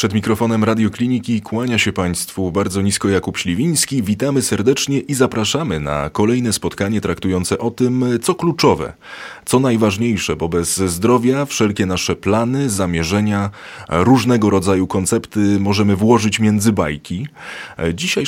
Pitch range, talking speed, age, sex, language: 95-120 Hz, 130 wpm, 30-49, male, Polish